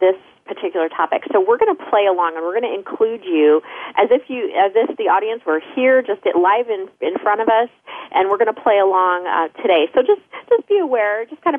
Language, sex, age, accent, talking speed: English, female, 30-49, American, 240 wpm